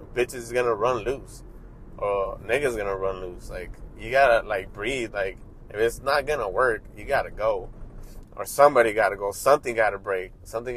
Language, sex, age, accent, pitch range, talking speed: English, male, 20-39, American, 95-120 Hz, 180 wpm